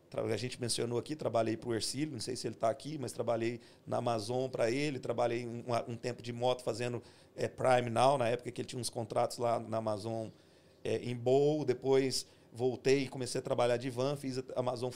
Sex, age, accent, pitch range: male, 40-59, Brazilian, 120-150 Hz